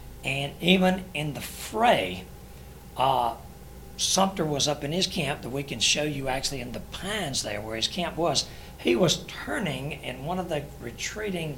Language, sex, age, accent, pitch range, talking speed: English, male, 60-79, American, 135-175 Hz, 175 wpm